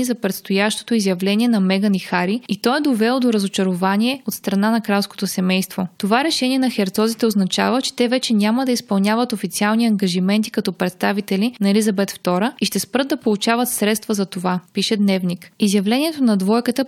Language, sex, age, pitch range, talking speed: Bulgarian, female, 20-39, 195-240 Hz, 175 wpm